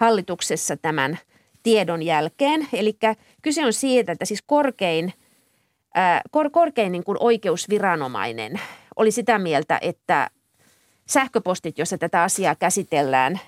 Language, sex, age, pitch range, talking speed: Finnish, female, 30-49, 170-230 Hz, 115 wpm